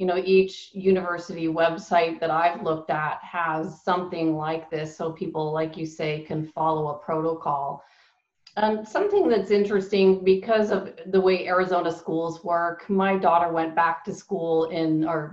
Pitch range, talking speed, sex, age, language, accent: 165-195 Hz, 165 wpm, female, 30-49, English, American